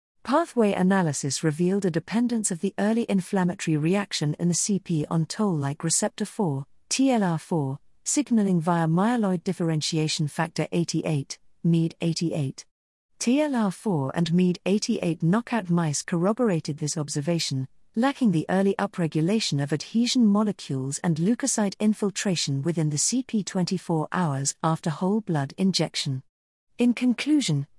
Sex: female